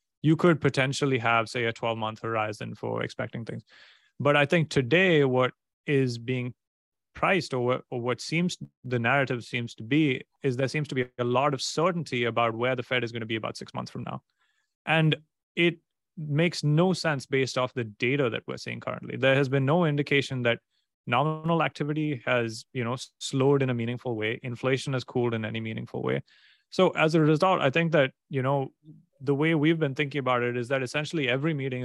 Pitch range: 120-155 Hz